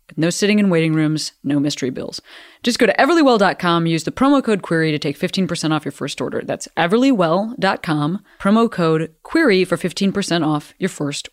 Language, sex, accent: English, female, American